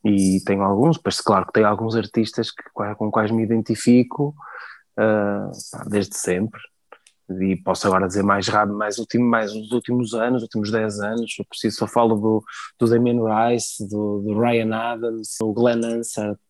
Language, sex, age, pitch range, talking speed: Portuguese, male, 20-39, 110-130 Hz, 165 wpm